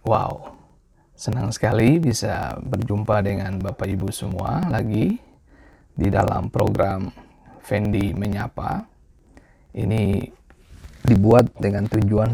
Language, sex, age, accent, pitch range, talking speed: Indonesian, male, 20-39, native, 100-115 Hz, 90 wpm